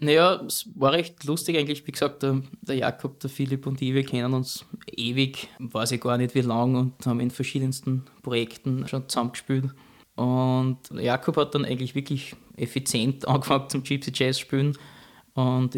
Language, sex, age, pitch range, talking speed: German, male, 20-39, 125-140 Hz, 170 wpm